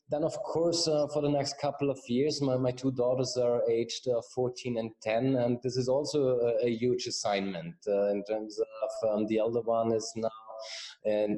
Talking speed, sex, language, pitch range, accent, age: 205 wpm, male, English, 110-130 Hz, German, 20-39